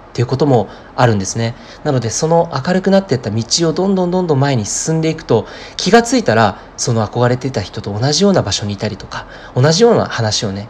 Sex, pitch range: male, 110-175 Hz